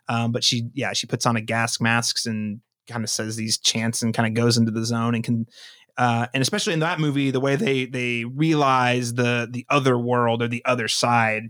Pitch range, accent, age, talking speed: 120-155 Hz, American, 30-49, 230 wpm